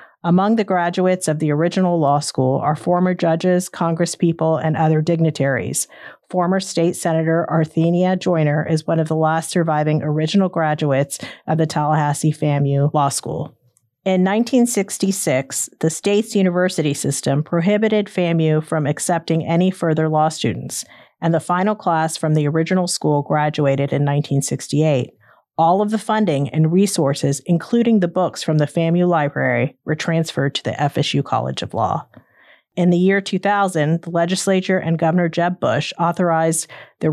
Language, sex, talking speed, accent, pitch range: English, female, 150 wpm, American, 150-180 Hz